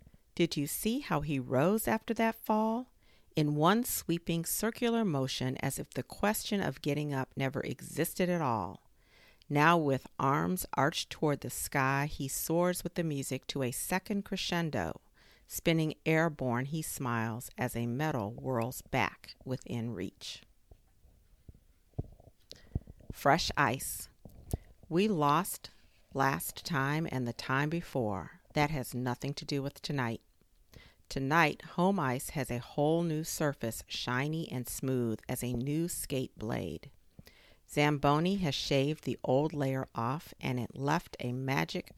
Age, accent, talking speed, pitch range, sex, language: 50-69, American, 140 wpm, 125-165 Hz, female, English